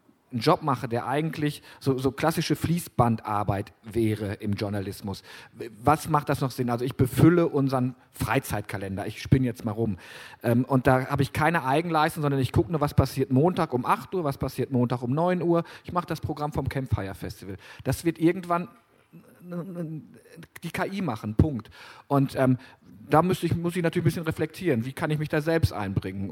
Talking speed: 185 wpm